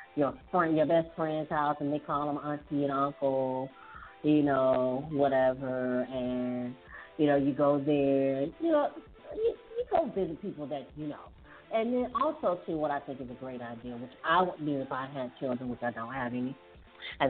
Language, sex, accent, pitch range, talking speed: English, female, American, 125-160 Hz, 200 wpm